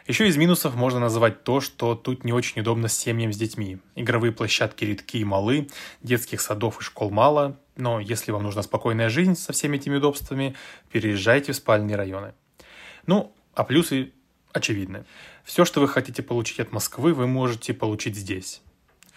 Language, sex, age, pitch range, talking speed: Russian, male, 20-39, 105-130 Hz, 170 wpm